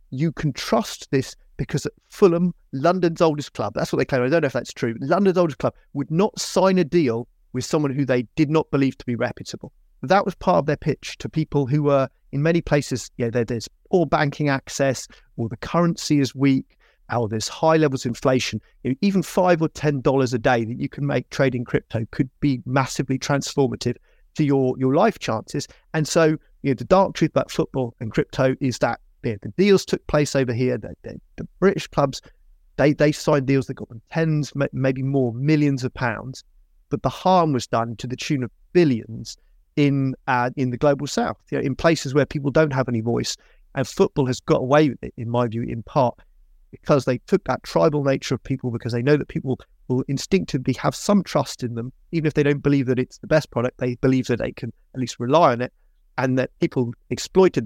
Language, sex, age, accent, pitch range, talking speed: English, male, 30-49, British, 125-155 Hz, 215 wpm